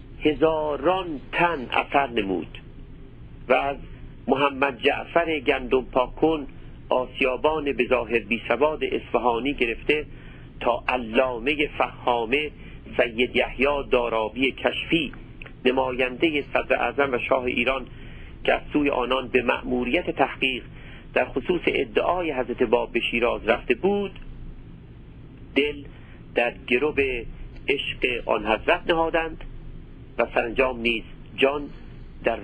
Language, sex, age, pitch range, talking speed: Persian, male, 50-69, 115-140 Hz, 100 wpm